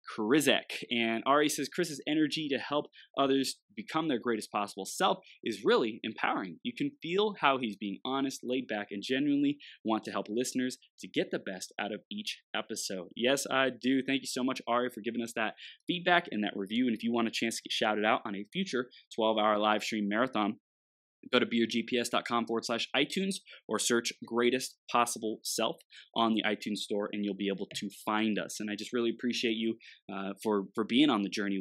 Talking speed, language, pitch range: 205 wpm, English, 105-130 Hz